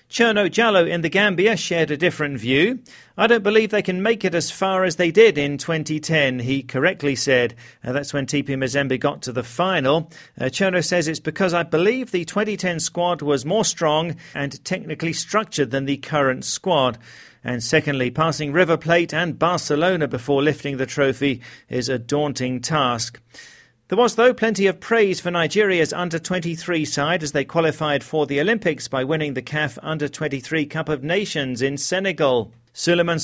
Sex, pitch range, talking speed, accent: male, 135-175 Hz, 175 wpm, British